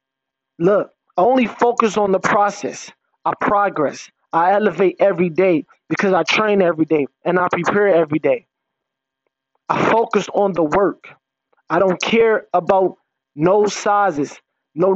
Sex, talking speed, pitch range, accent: male, 140 wpm, 160-215 Hz, American